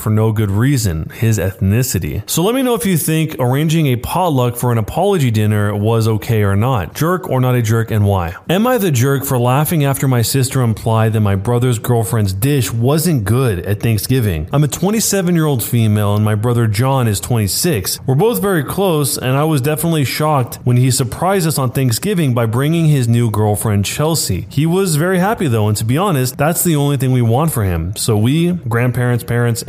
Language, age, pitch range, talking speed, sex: English, 30-49, 110-155 Hz, 210 wpm, male